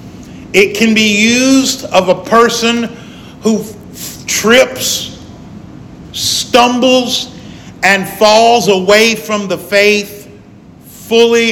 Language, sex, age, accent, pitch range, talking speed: English, male, 50-69, American, 180-225 Hz, 90 wpm